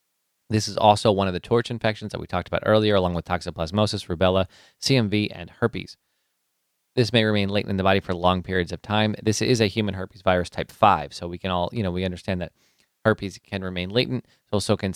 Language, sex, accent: English, male, American